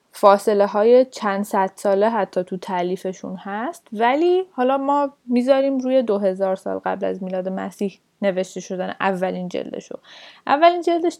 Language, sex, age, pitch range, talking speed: Persian, female, 10-29, 200-275 Hz, 145 wpm